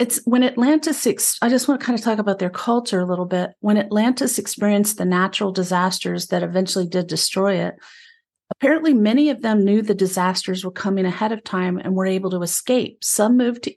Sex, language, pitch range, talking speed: female, English, 185-225 Hz, 205 wpm